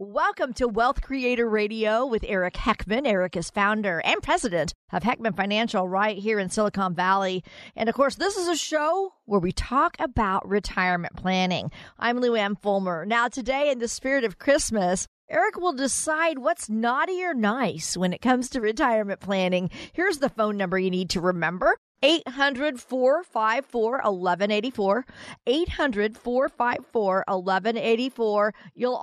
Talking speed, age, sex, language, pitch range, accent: 140 wpm, 40-59, female, English, 200-265 Hz, American